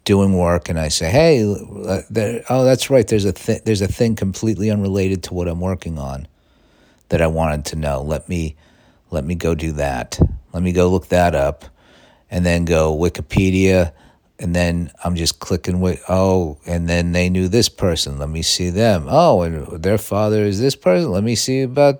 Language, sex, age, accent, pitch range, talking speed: English, male, 50-69, American, 85-110 Hz, 195 wpm